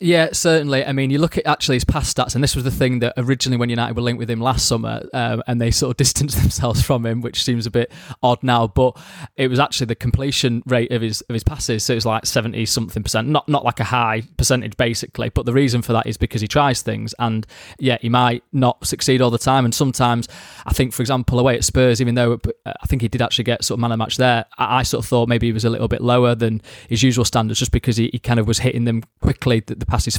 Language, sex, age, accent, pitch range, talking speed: English, male, 20-39, British, 115-130 Hz, 275 wpm